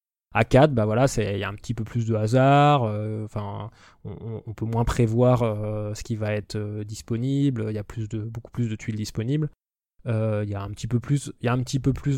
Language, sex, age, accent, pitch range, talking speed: French, male, 20-39, French, 110-135 Hz, 265 wpm